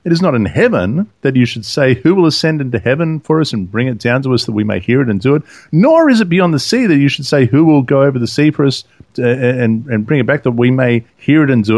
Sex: male